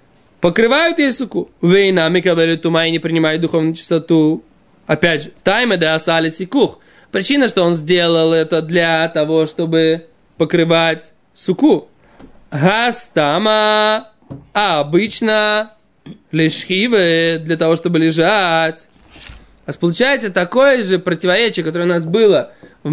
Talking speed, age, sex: 100 wpm, 20-39, male